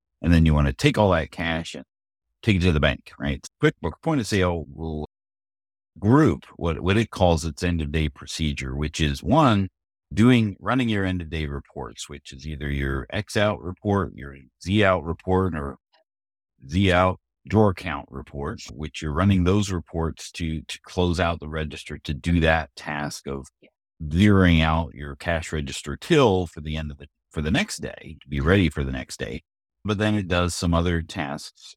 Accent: American